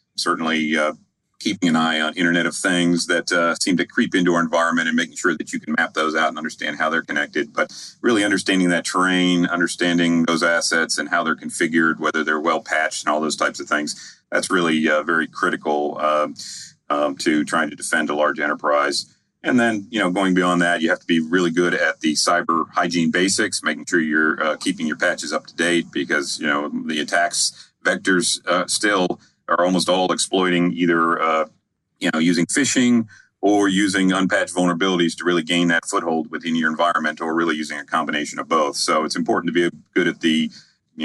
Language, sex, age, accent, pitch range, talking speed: English, male, 40-59, American, 80-90 Hz, 205 wpm